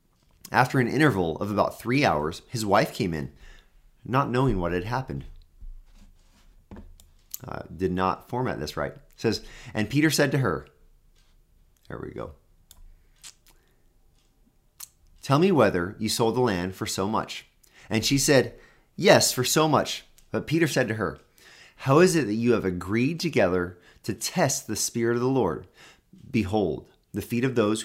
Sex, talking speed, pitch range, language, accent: male, 160 wpm, 90-120 Hz, English, American